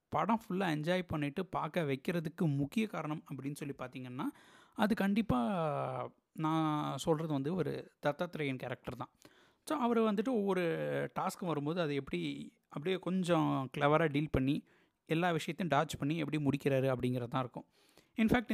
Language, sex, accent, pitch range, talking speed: Tamil, male, native, 140-180 Hz, 140 wpm